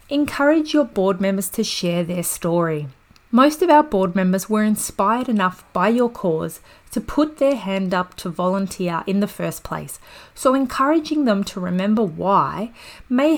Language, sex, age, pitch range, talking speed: English, female, 30-49, 175-220 Hz, 165 wpm